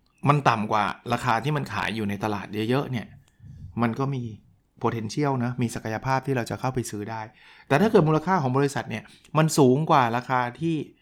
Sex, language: male, Thai